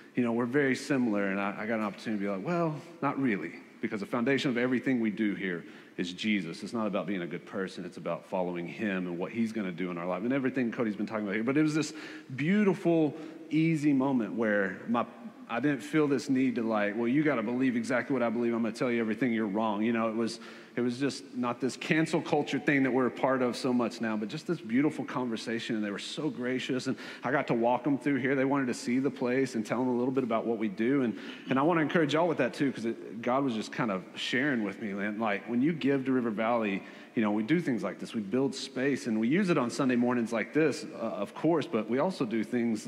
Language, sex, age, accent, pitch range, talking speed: English, male, 30-49, American, 110-135 Hz, 275 wpm